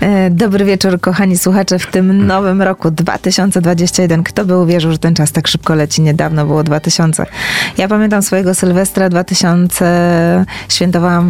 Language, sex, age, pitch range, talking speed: Polish, female, 20-39, 170-195 Hz, 145 wpm